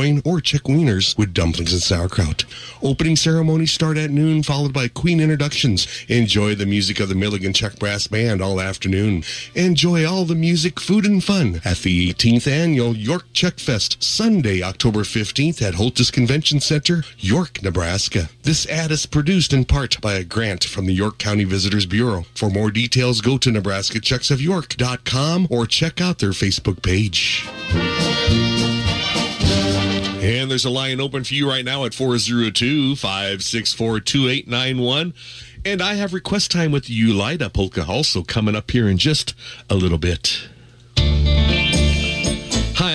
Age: 40-59